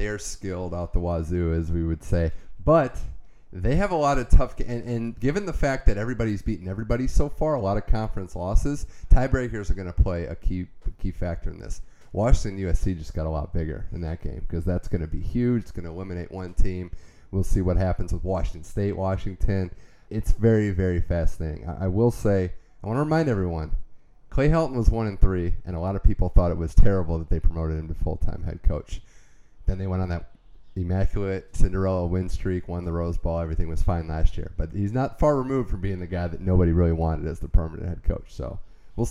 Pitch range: 85-110 Hz